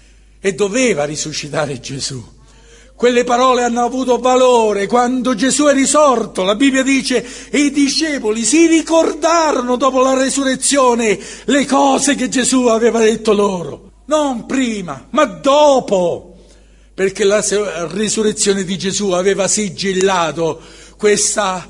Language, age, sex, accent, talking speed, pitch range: Italian, 60-79, male, native, 120 wpm, 190-245 Hz